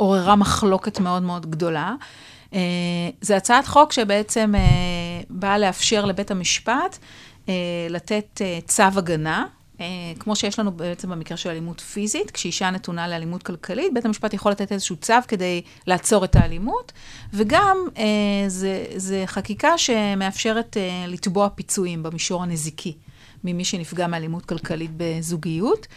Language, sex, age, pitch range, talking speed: Hebrew, female, 40-59, 175-215 Hz, 120 wpm